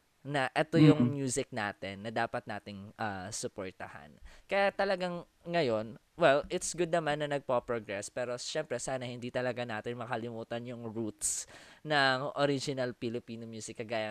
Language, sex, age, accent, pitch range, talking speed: English, female, 20-39, Filipino, 120-165 Hz, 140 wpm